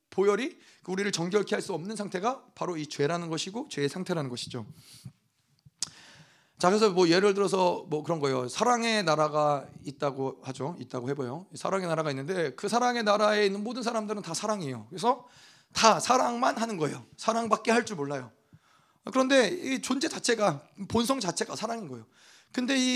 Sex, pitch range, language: male, 145-245 Hz, Korean